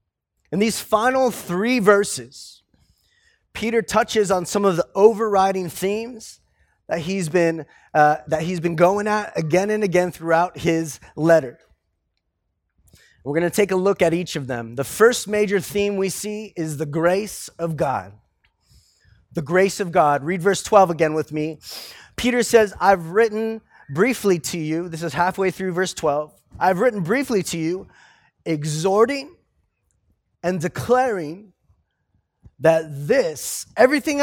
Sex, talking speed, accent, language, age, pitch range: male, 145 wpm, American, English, 30-49, 160-220 Hz